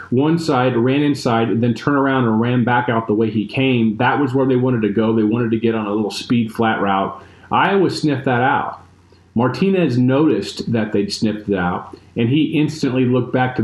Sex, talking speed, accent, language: male, 220 wpm, American, English